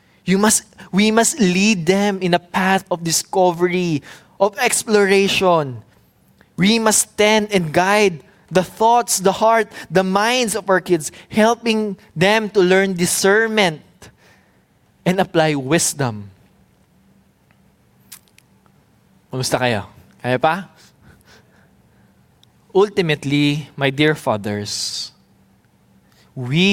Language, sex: English, male